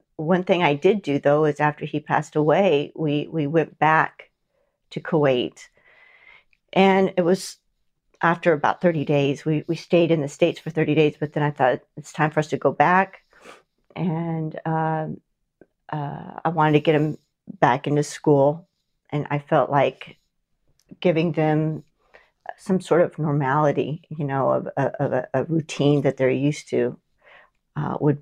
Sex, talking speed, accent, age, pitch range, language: female, 170 wpm, American, 50-69, 140-165 Hz, English